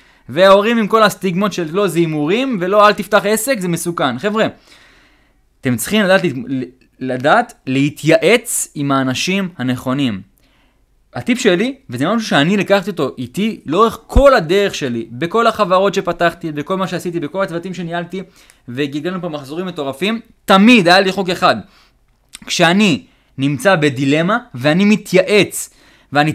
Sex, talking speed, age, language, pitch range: male, 55 wpm, 20-39, English, 150-210 Hz